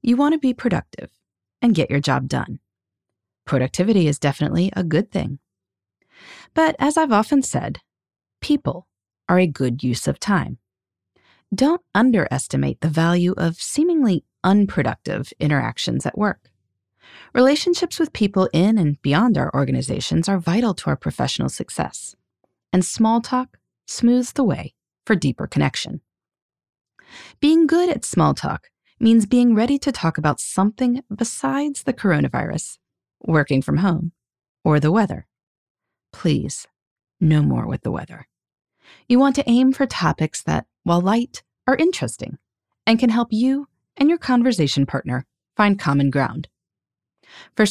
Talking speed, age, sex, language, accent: 140 wpm, 30-49, female, English, American